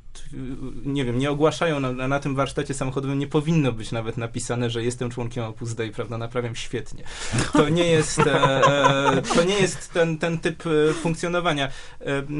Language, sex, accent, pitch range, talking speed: Polish, male, native, 130-165 Hz, 155 wpm